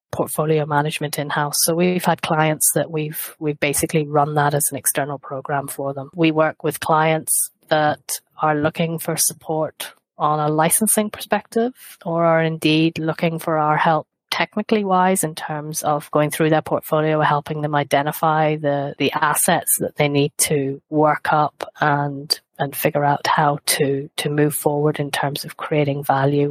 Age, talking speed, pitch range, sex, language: 30-49, 170 wpm, 145-165 Hz, female, English